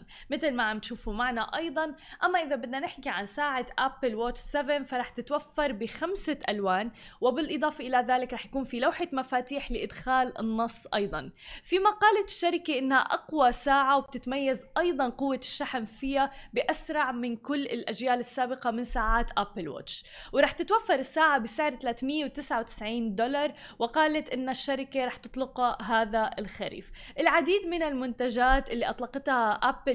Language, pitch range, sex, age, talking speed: Arabic, 230-280 Hz, female, 20-39, 140 wpm